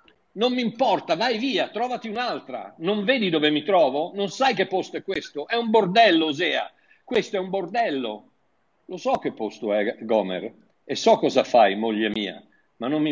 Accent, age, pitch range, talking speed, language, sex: native, 50-69, 155-220 Hz, 190 wpm, Italian, male